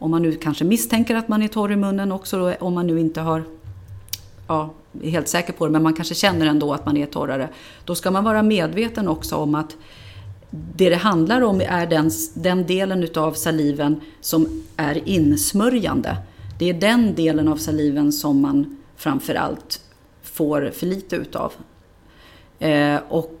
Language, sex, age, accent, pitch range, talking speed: Swedish, female, 30-49, native, 150-195 Hz, 170 wpm